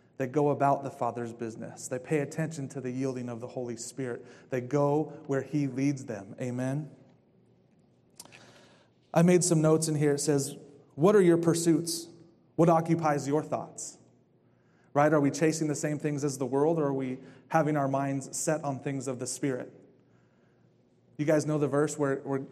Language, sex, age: English, male, 30-49